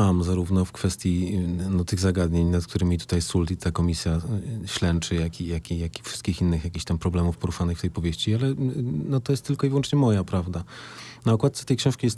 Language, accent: Polish, native